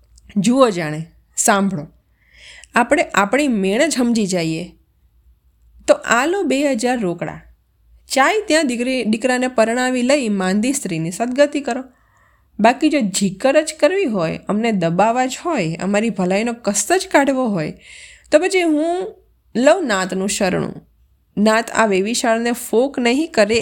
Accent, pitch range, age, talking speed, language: native, 185-235 Hz, 20-39, 135 wpm, Gujarati